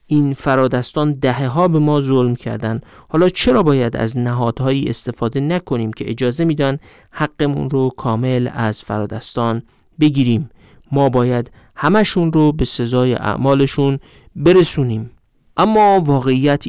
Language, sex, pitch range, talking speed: Persian, male, 120-150 Hz, 120 wpm